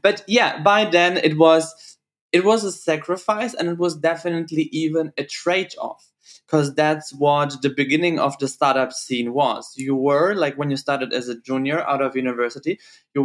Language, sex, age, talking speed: German, male, 20-39, 180 wpm